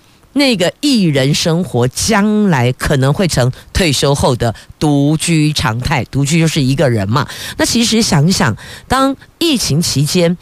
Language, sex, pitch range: Chinese, female, 140-205 Hz